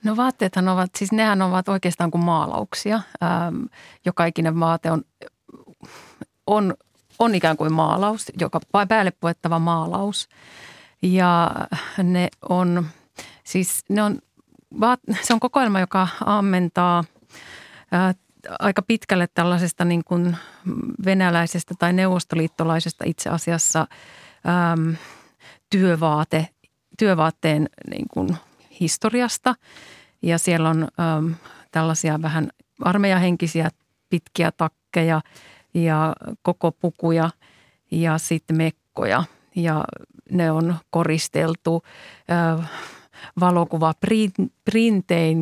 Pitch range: 165-195 Hz